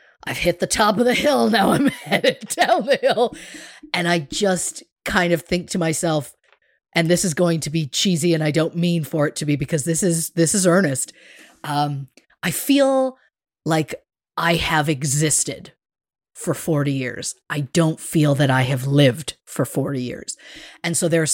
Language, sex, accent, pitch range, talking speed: English, female, American, 155-215 Hz, 185 wpm